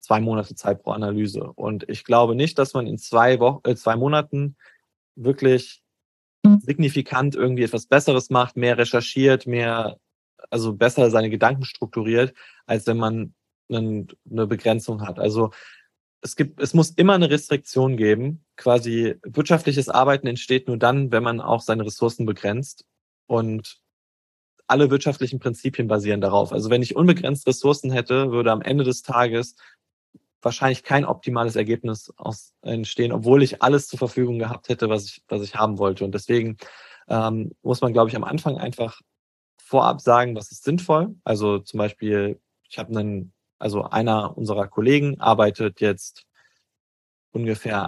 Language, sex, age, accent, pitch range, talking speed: German, male, 20-39, German, 110-130 Hz, 150 wpm